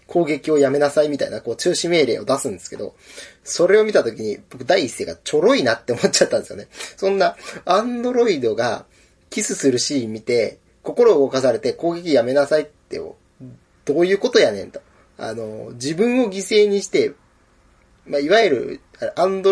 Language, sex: Japanese, male